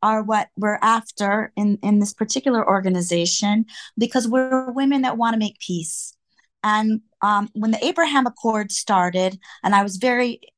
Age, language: 30-49, English